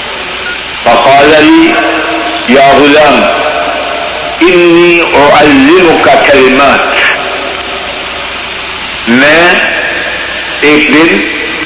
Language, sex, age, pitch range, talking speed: Urdu, male, 50-69, 140-210 Hz, 55 wpm